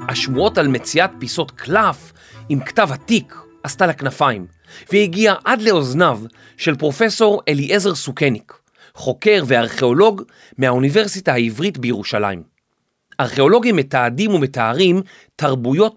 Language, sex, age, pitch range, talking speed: Hebrew, male, 30-49, 130-195 Hz, 100 wpm